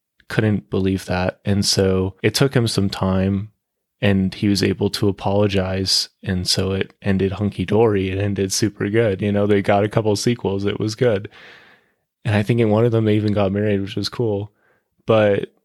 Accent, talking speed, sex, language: American, 195 wpm, male, English